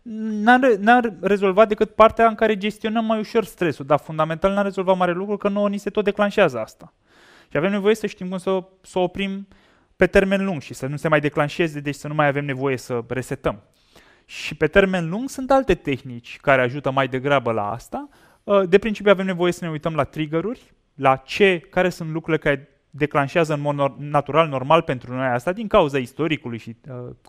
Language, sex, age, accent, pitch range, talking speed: Romanian, male, 20-39, native, 140-200 Hz, 200 wpm